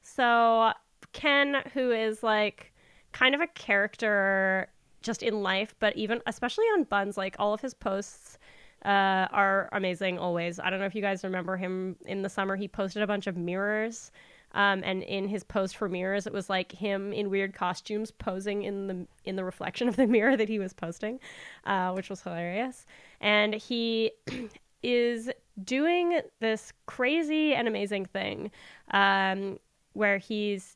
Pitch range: 190-225 Hz